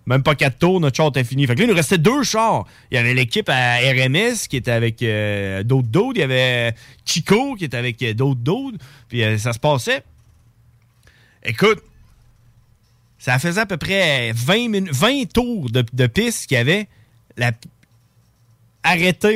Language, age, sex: French, 30-49, male